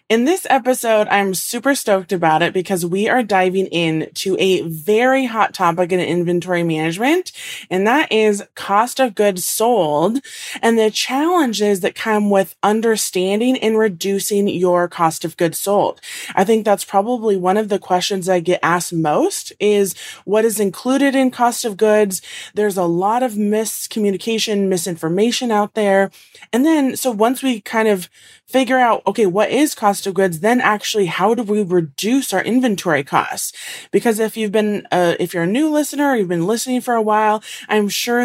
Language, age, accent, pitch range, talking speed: English, 20-39, American, 190-245 Hz, 175 wpm